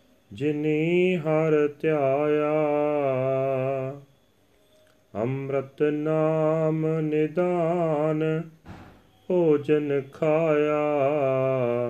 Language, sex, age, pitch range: Punjabi, male, 40-59, 130-155 Hz